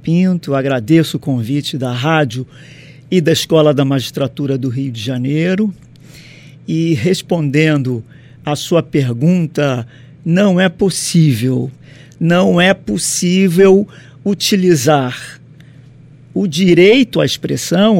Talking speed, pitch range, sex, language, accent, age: 105 wpm, 145-195 Hz, male, Portuguese, Brazilian, 50-69